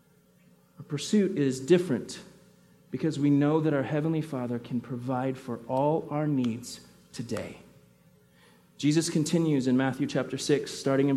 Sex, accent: male, American